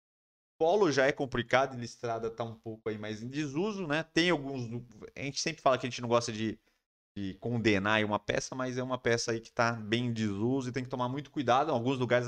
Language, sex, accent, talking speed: Portuguese, male, Brazilian, 235 wpm